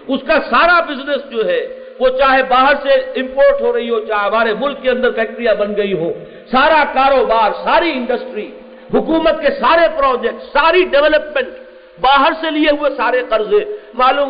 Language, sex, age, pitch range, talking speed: Urdu, male, 50-69, 235-295 Hz, 165 wpm